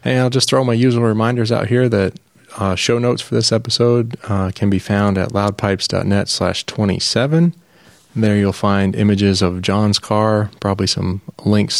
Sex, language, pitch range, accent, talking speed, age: male, English, 95-115 Hz, American, 175 wpm, 20-39